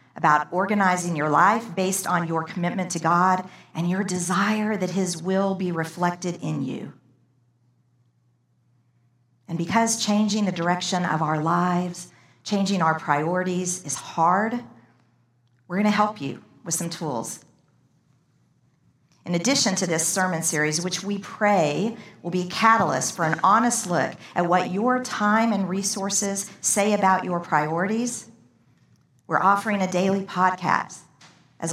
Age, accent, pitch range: 50-69, American, 160-200 Hz